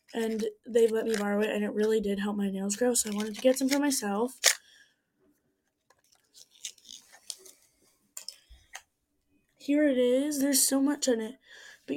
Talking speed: 155 wpm